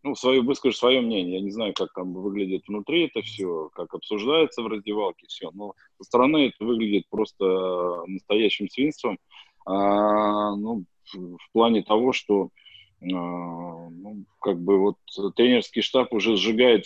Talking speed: 145 wpm